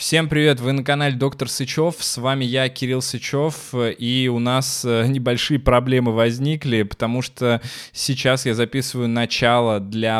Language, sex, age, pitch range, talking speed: Russian, male, 20-39, 115-130 Hz, 145 wpm